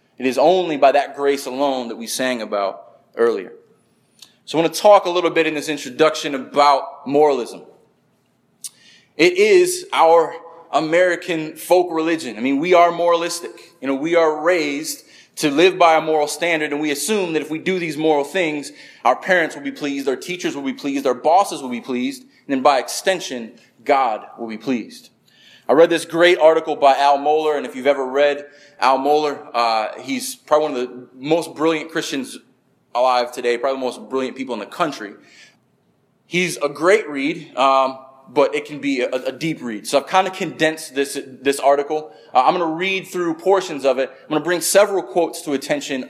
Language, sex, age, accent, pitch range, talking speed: English, male, 20-39, American, 135-175 Hz, 200 wpm